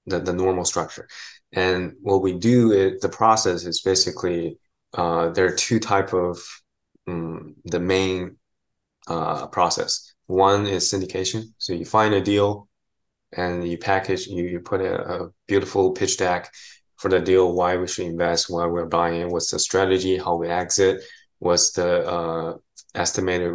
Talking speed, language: 160 wpm, English